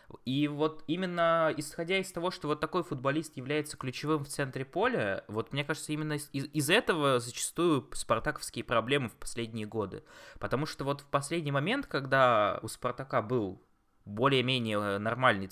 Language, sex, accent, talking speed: Russian, male, native, 155 wpm